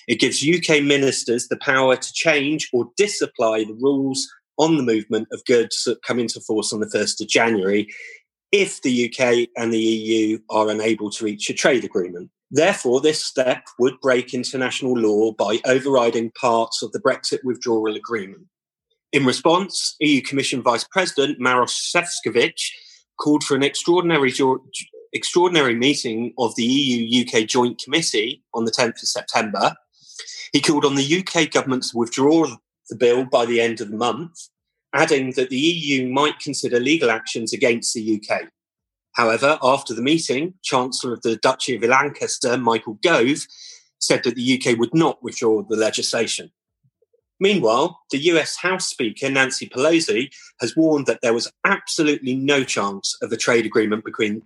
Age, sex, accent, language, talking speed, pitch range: 30-49, male, British, English, 160 wpm, 115-155 Hz